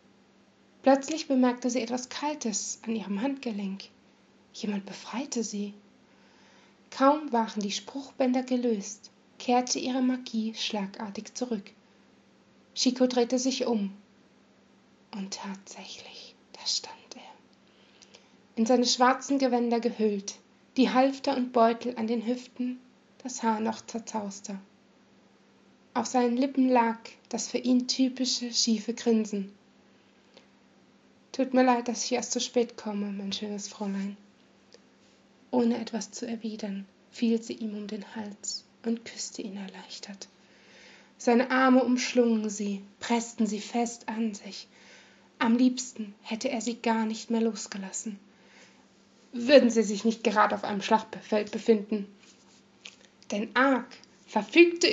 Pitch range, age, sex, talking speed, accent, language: 215-250 Hz, 20-39, female, 120 wpm, German, German